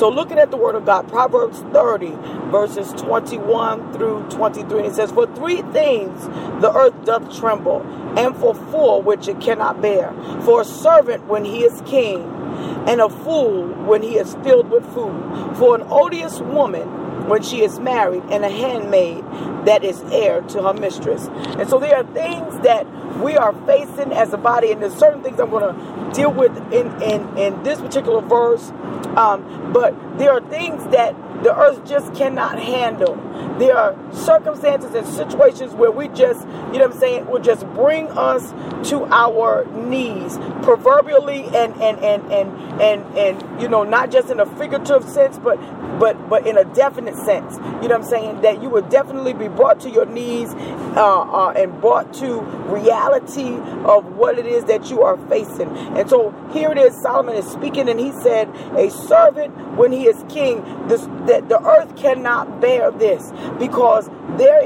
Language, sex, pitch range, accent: English, female, 225-320 Hz, American